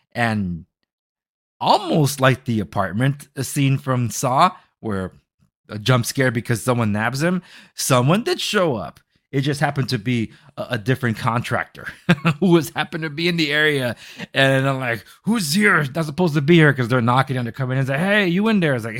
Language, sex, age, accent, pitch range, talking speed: English, male, 30-49, American, 110-150 Hz, 205 wpm